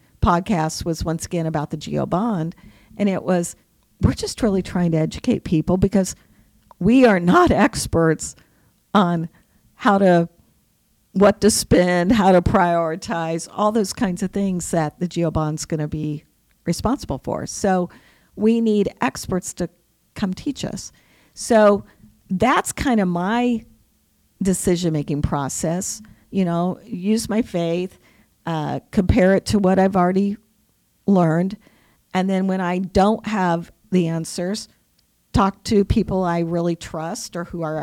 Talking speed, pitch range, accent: 145 wpm, 165-205 Hz, American